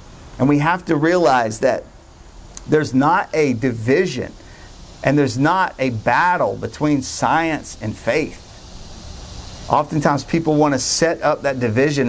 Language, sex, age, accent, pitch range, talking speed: English, male, 50-69, American, 110-145 Hz, 135 wpm